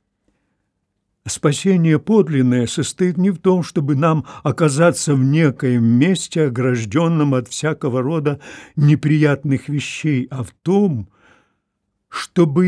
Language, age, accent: Russian, 60-79, native